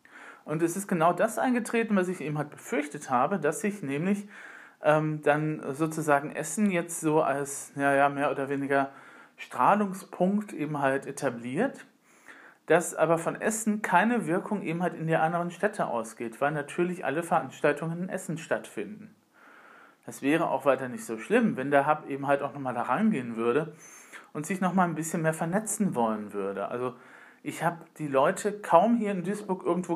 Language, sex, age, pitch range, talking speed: German, male, 40-59, 140-180 Hz, 175 wpm